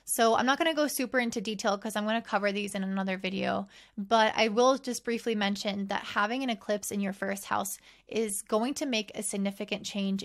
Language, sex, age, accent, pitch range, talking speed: English, female, 20-39, American, 200-235 Hz, 230 wpm